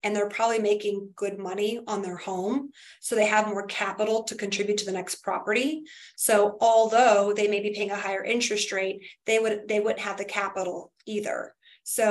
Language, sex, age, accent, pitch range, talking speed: English, female, 30-49, American, 205-235 Hz, 195 wpm